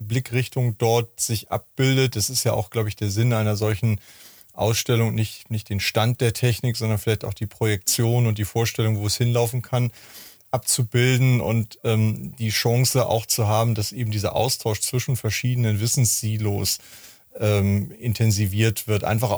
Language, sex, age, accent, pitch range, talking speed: German, male, 30-49, German, 110-120 Hz, 160 wpm